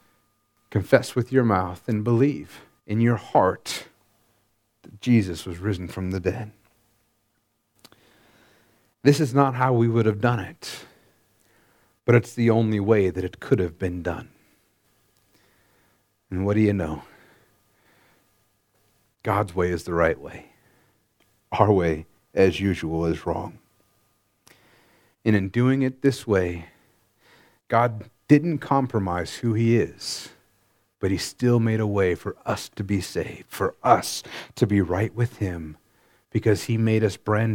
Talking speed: 140 wpm